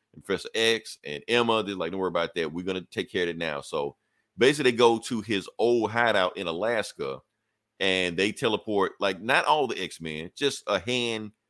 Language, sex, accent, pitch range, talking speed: English, male, American, 95-120 Hz, 200 wpm